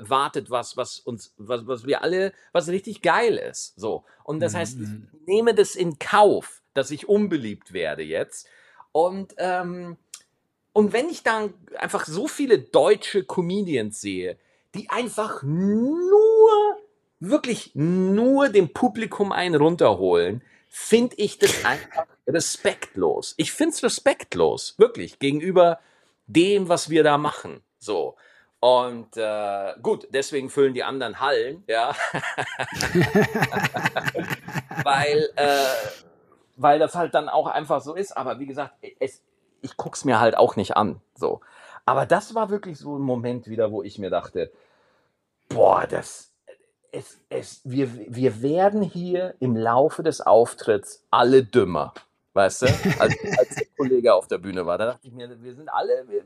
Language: German